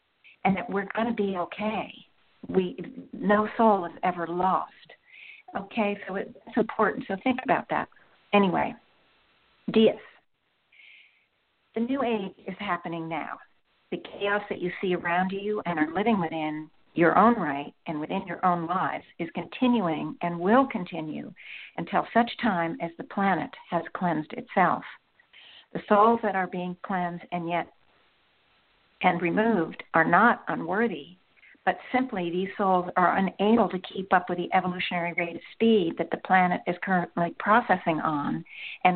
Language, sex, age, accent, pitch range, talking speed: English, female, 50-69, American, 175-215 Hz, 150 wpm